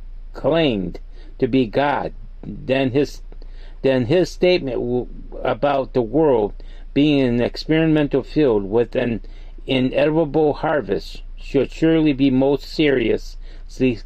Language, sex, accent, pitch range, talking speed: English, male, American, 110-150 Hz, 110 wpm